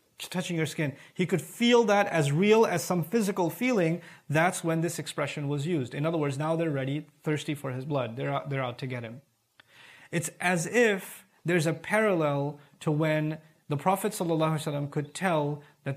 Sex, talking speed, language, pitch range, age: male, 185 wpm, English, 140-180 Hz, 30-49